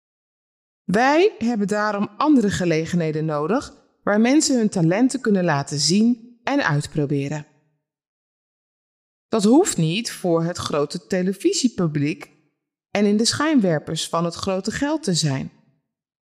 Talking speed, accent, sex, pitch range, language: 120 wpm, Dutch, female, 165-240 Hz, Dutch